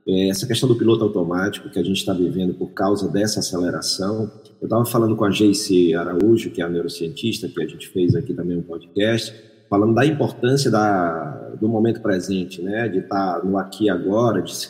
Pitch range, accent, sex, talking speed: 115-150 Hz, Brazilian, male, 195 wpm